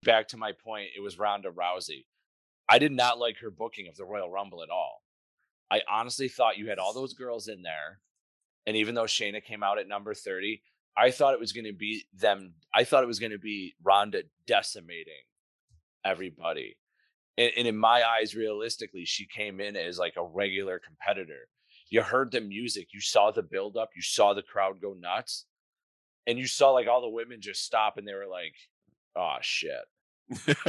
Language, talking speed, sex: English, 200 wpm, male